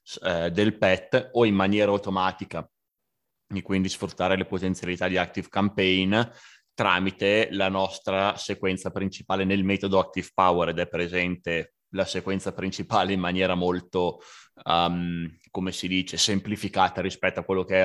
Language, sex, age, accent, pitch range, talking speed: Italian, male, 20-39, native, 90-100 Hz, 140 wpm